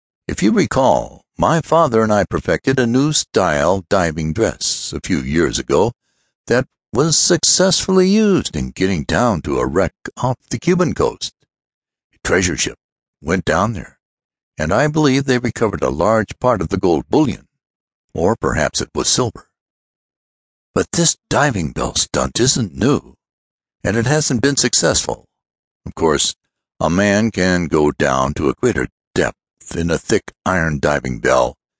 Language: English